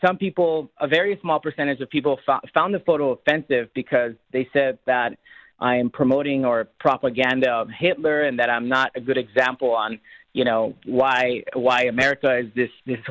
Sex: male